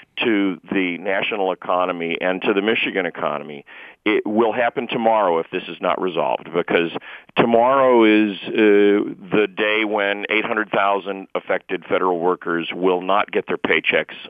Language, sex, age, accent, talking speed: English, male, 50-69, American, 145 wpm